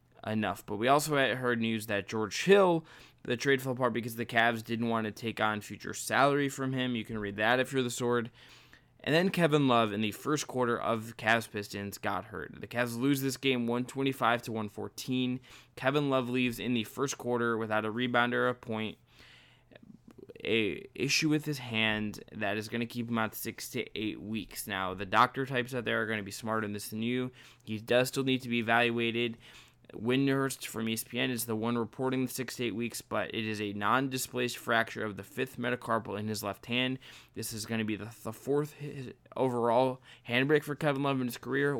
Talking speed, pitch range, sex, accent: 210 wpm, 110-130 Hz, male, American